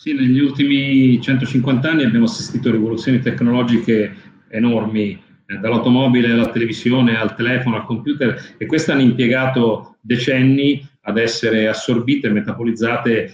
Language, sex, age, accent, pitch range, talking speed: Italian, male, 40-59, native, 110-130 Hz, 130 wpm